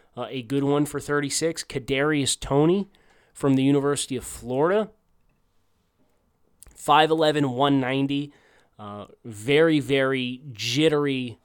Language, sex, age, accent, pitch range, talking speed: English, male, 20-39, American, 115-145 Hz, 100 wpm